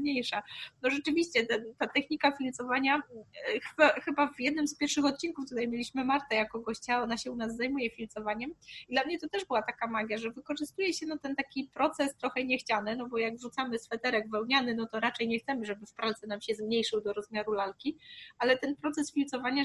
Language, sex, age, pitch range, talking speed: Polish, female, 20-39, 220-265 Hz, 190 wpm